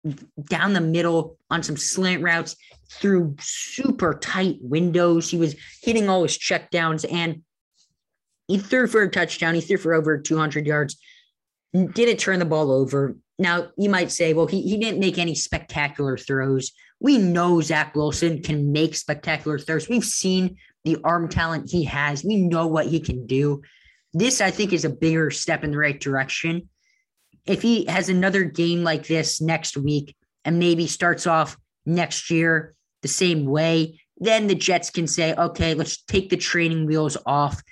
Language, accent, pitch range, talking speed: English, American, 155-180 Hz, 175 wpm